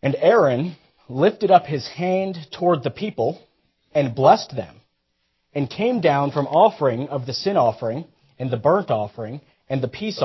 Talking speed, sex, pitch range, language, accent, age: 165 wpm, male, 110-180 Hz, English, American, 40-59